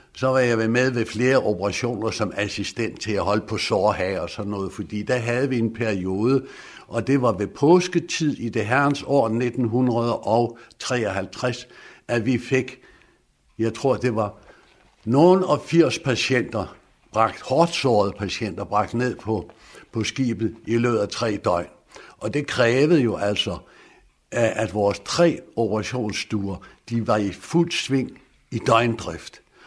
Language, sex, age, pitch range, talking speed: Danish, male, 60-79, 105-130 Hz, 145 wpm